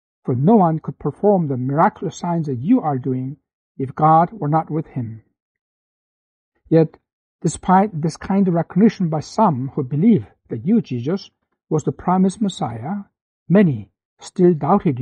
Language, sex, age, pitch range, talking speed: English, male, 60-79, 145-185 Hz, 150 wpm